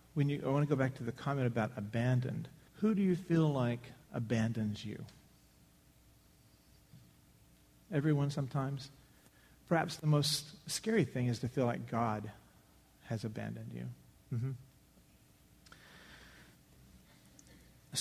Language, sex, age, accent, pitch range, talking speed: English, male, 40-59, American, 120-150 Hz, 115 wpm